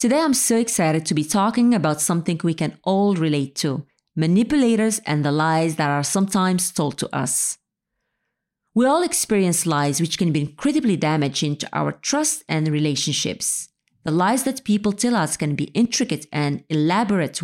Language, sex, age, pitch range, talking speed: English, female, 30-49, 155-215 Hz, 170 wpm